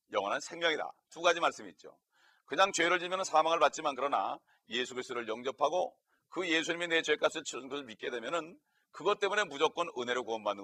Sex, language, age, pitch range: male, Korean, 40-59, 120-160 Hz